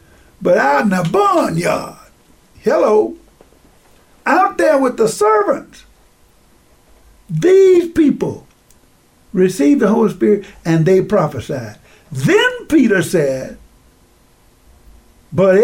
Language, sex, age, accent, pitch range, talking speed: English, male, 60-79, American, 140-195 Hz, 90 wpm